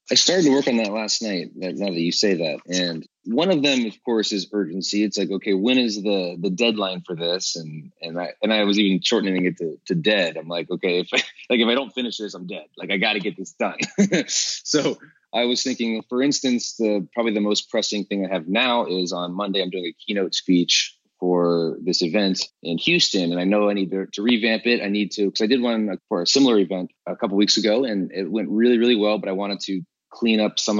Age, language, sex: 20-39, English, male